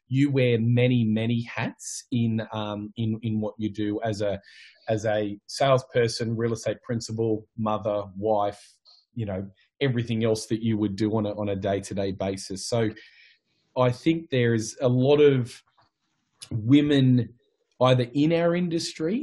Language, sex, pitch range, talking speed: English, male, 110-125 Hz, 150 wpm